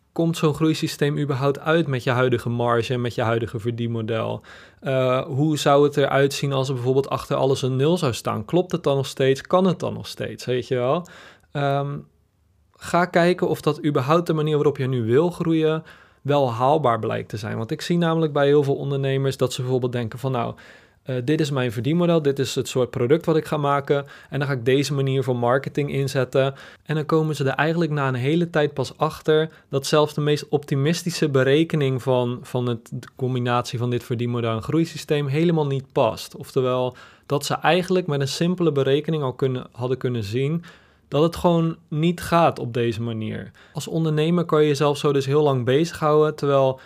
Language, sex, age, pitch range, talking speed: Dutch, male, 20-39, 130-155 Hz, 200 wpm